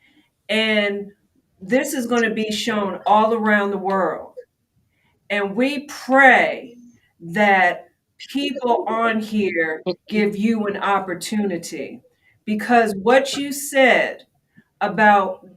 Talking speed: 105 wpm